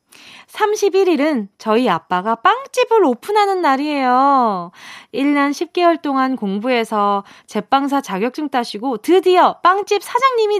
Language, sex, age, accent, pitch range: Korean, female, 20-39, native, 215-315 Hz